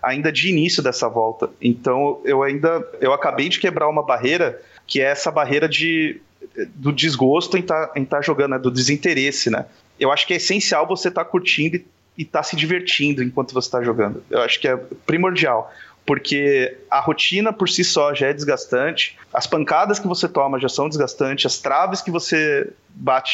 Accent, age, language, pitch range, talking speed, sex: Brazilian, 30-49, Portuguese, 140-180 Hz, 195 wpm, male